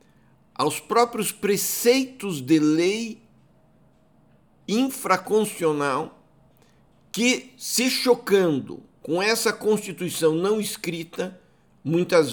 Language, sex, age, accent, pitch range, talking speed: Portuguese, male, 60-79, Brazilian, 135-195 Hz, 75 wpm